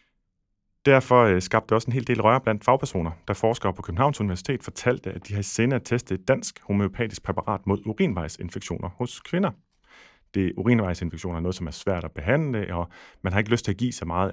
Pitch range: 90-120 Hz